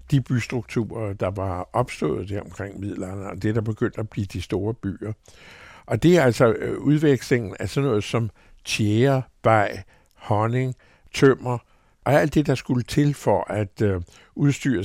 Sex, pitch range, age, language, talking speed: male, 105-135 Hz, 60-79, Danish, 160 wpm